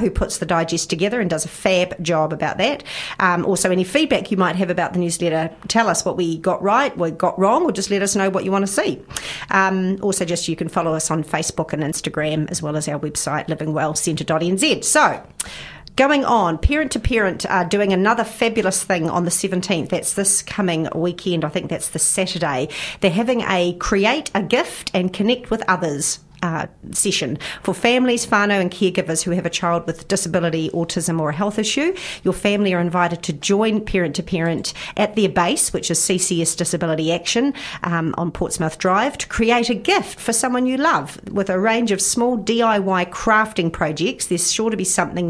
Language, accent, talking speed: English, Australian, 200 wpm